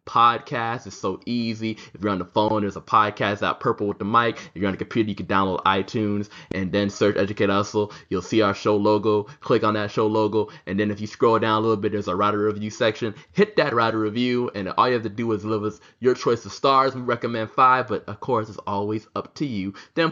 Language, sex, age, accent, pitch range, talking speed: English, male, 20-39, American, 100-130 Hz, 250 wpm